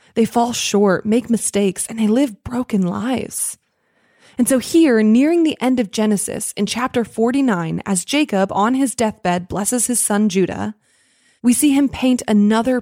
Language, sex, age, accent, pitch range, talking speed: English, female, 20-39, American, 200-245 Hz, 165 wpm